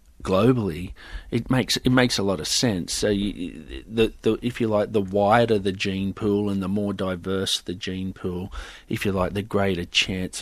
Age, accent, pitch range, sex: 40-59, Australian, 95-115 Hz, male